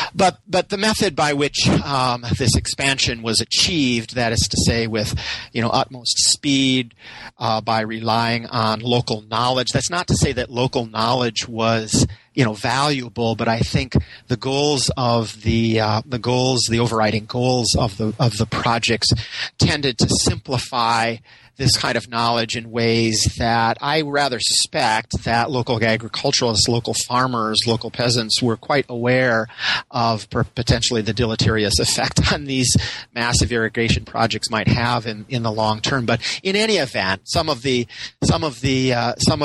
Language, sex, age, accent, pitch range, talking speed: English, male, 40-59, American, 115-130 Hz, 165 wpm